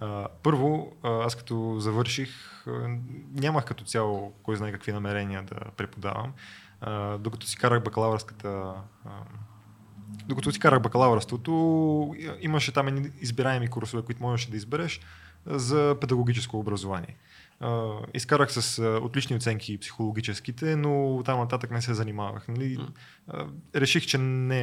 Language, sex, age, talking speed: Bulgarian, male, 20-39, 105 wpm